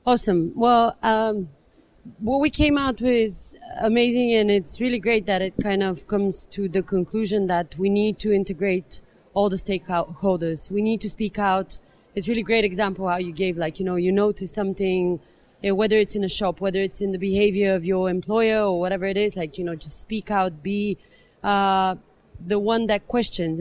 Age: 30-49